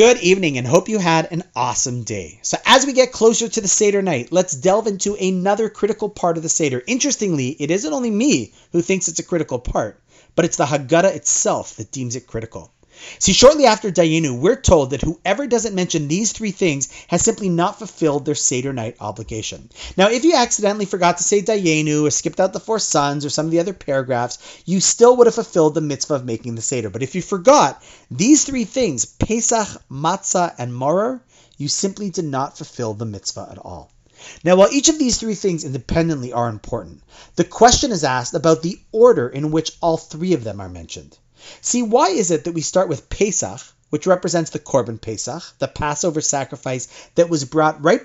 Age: 30-49